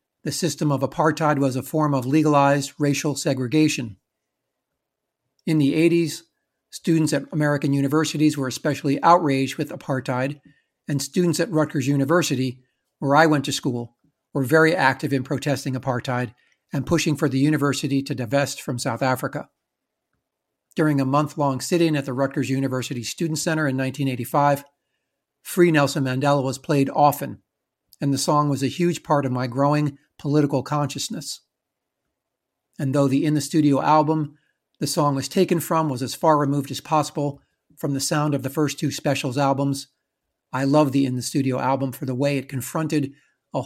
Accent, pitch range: American, 135-155 Hz